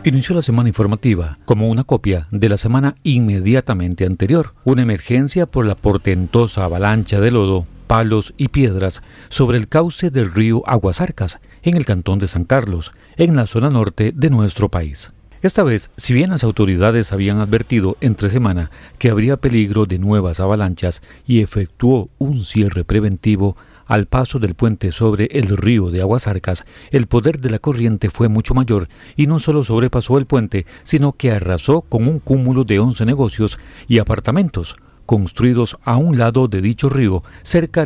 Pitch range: 100-130 Hz